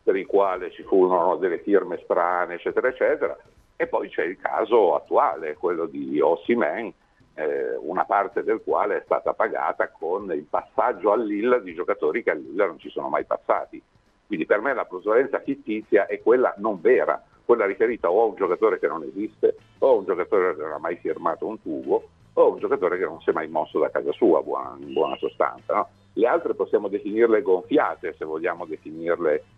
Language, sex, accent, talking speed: Italian, male, native, 200 wpm